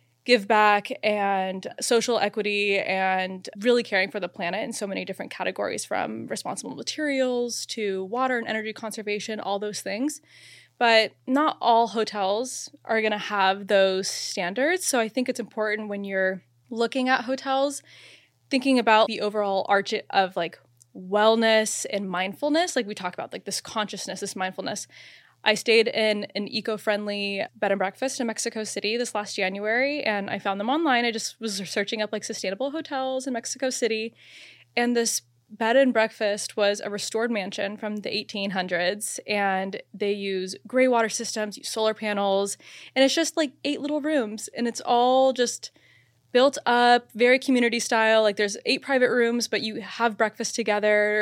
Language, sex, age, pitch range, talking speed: English, female, 20-39, 200-240 Hz, 170 wpm